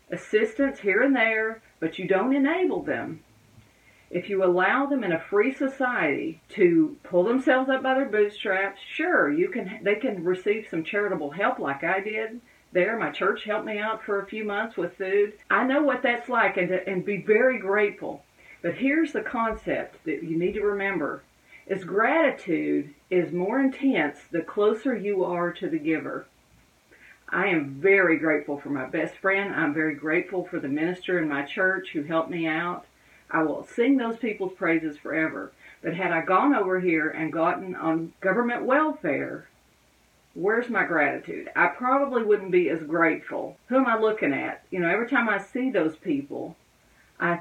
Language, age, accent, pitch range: English, 40-59, American, 170-235 Hz